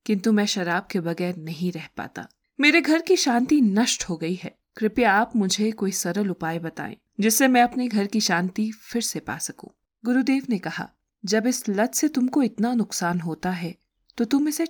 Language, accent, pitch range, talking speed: Hindi, native, 185-270 Hz, 195 wpm